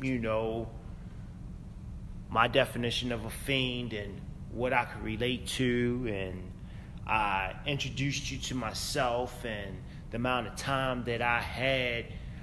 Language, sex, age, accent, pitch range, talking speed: English, male, 30-49, American, 115-155 Hz, 130 wpm